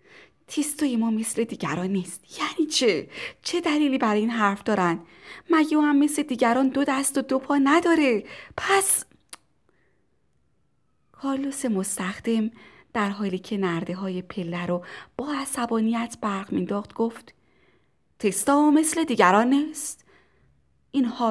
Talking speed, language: 120 wpm, Persian